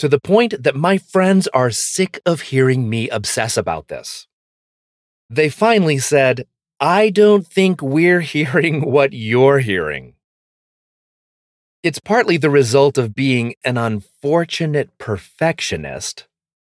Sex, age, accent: male, 30-49, American